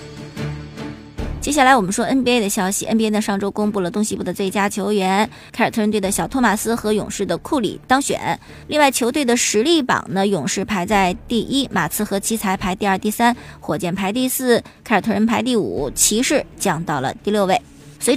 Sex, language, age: male, Chinese, 20-39